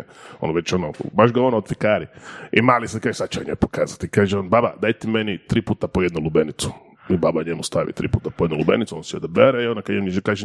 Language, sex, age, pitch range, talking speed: Croatian, male, 20-39, 100-125 Hz, 255 wpm